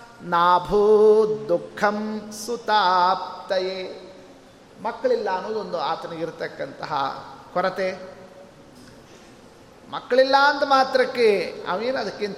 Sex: male